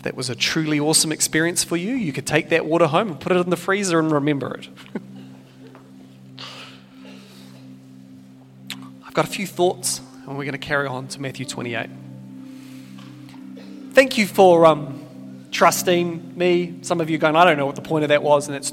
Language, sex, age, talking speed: English, male, 30-49, 190 wpm